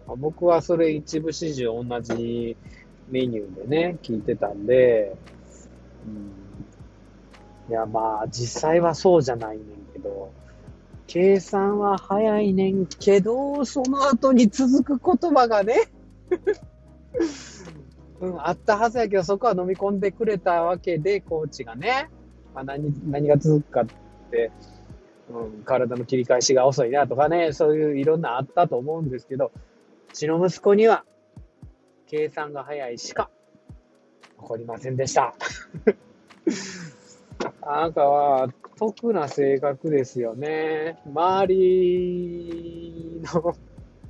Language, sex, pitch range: Japanese, male, 115-180 Hz